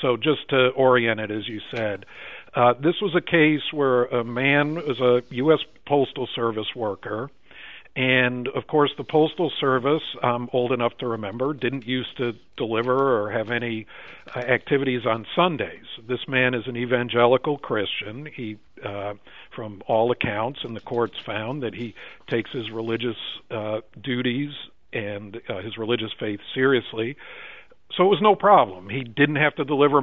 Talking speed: 165 wpm